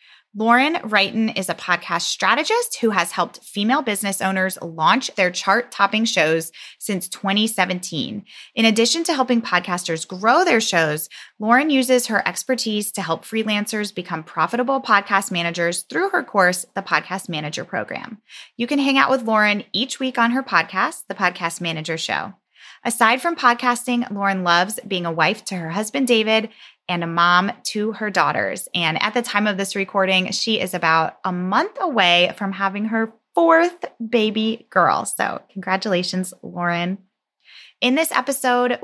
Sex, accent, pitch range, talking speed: female, American, 180-245 Hz, 160 wpm